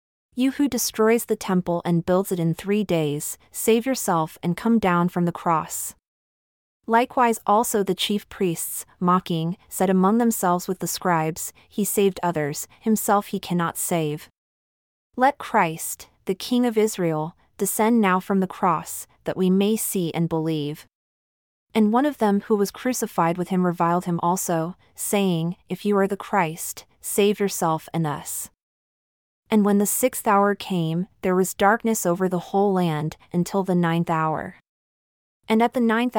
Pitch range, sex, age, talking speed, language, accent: 170-215 Hz, female, 30-49, 160 wpm, English, American